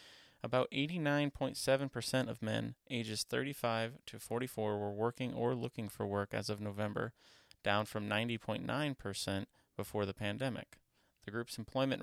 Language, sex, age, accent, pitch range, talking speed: English, male, 20-39, American, 105-125 Hz, 130 wpm